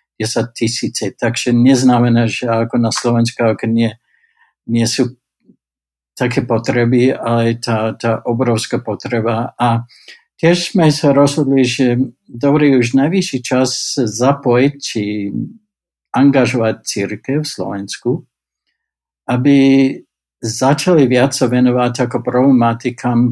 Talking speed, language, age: 105 wpm, Slovak, 60-79